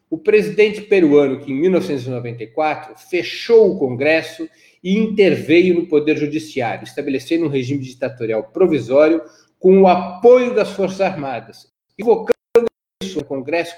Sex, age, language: male, 50-69, Portuguese